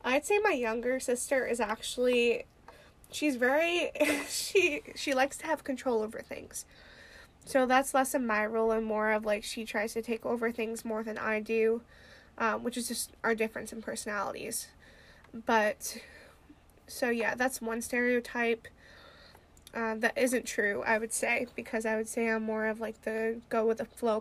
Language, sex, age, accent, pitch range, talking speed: English, female, 20-39, American, 220-250 Hz, 175 wpm